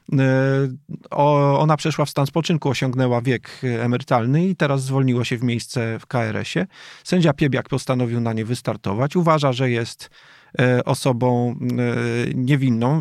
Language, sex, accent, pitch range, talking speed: Polish, male, native, 125-155 Hz, 130 wpm